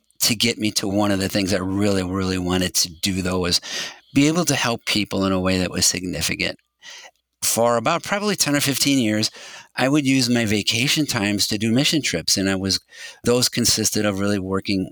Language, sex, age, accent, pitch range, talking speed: English, male, 50-69, American, 95-115 Hz, 210 wpm